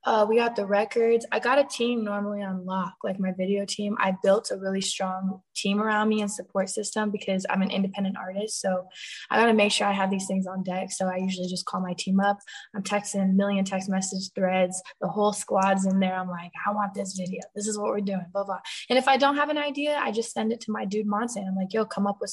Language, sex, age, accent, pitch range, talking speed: English, female, 20-39, American, 185-205 Hz, 265 wpm